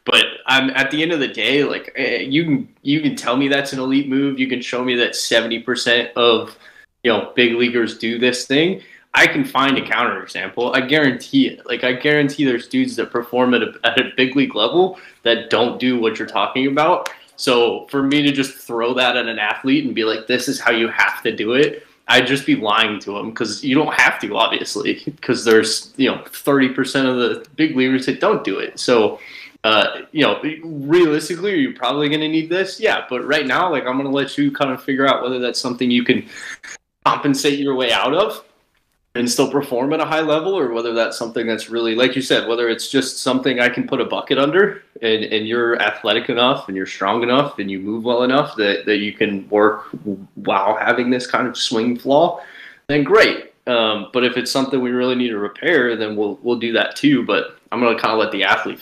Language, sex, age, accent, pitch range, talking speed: English, male, 20-39, American, 115-140 Hz, 230 wpm